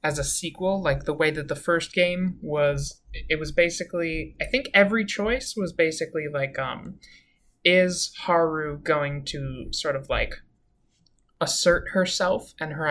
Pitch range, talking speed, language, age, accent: 140-160 Hz, 155 wpm, English, 20-39, American